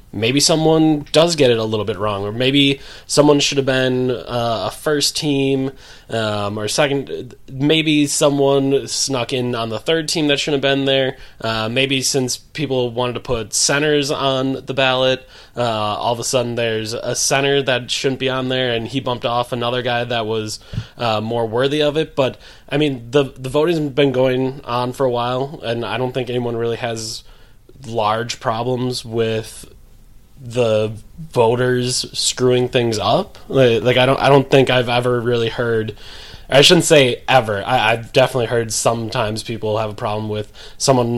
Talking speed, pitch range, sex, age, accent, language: 180 wpm, 115-135 Hz, male, 20-39, American, English